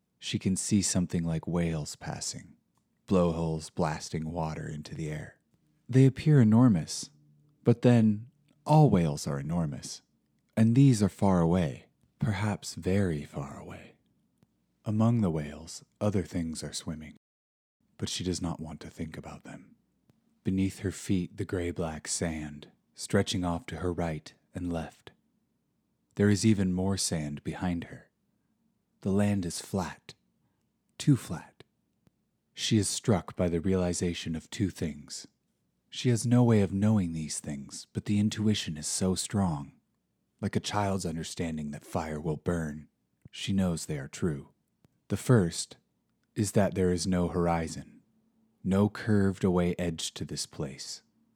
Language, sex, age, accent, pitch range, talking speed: English, male, 30-49, American, 80-105 Hz, 145 wpm